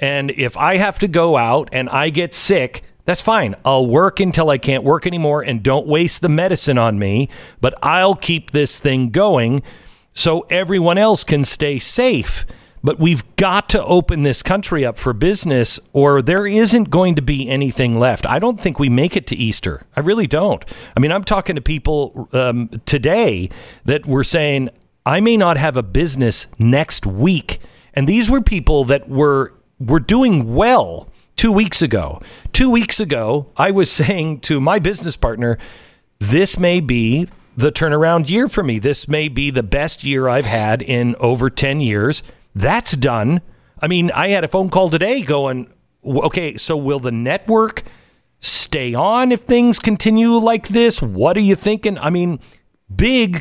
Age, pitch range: 50-69, 130-190 Hz